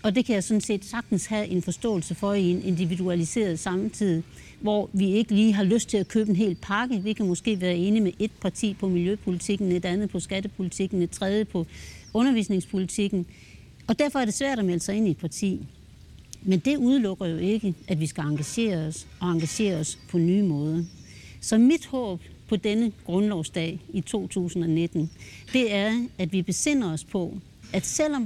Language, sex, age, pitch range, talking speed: Danish, female, 60-79, 170-215 Hz, 190 wpm